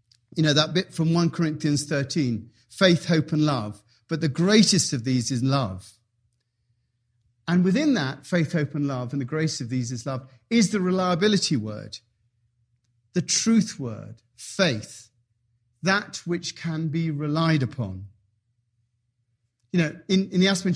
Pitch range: 115-170 Hz